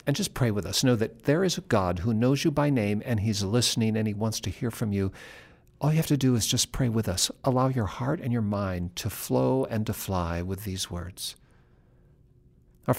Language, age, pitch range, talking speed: English, 50-69, 100-130 Hz, 235 wpm